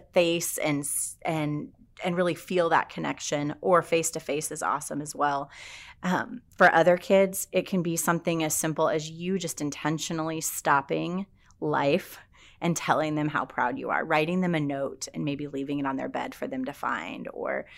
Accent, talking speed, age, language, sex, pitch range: American, 185 wpm, 30-49, English, female, 140-170 Hz